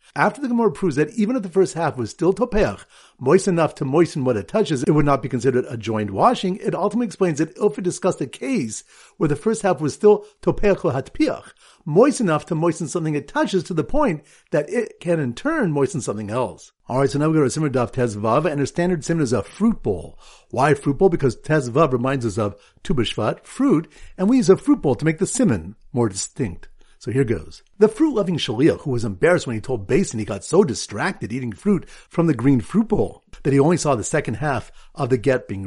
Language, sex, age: English, male, 50-69